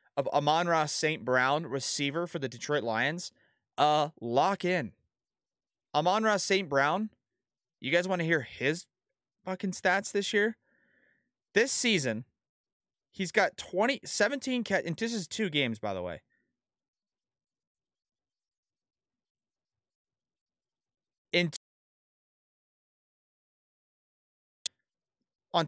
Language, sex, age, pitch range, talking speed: English, male, 30-49, 140-200 Hz, 105 wpm